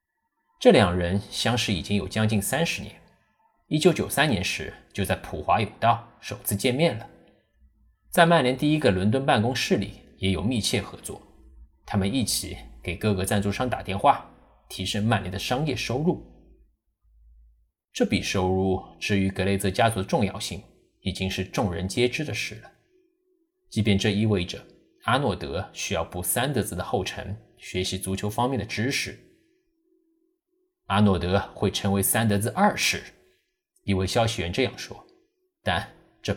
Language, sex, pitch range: Chinese, male, 95-130 Hz